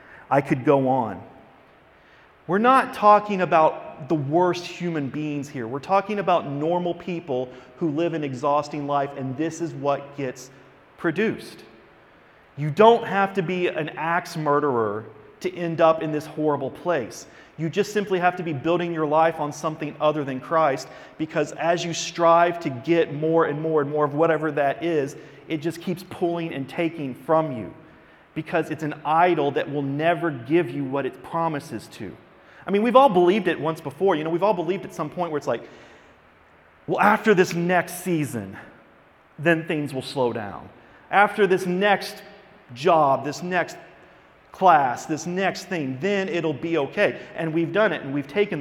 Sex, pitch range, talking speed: male, 135-175 Hz, 180 wpm